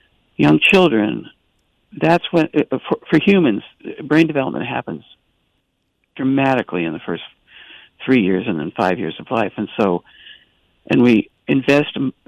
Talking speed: 125 wpm